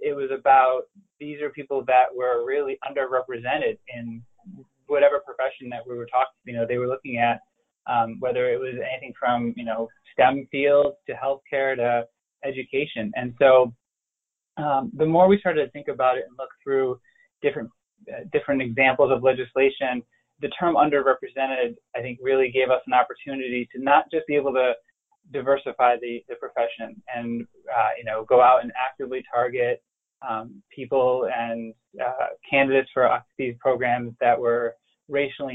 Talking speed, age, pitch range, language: 165 wpm, 20-39, 120-145 Hz, English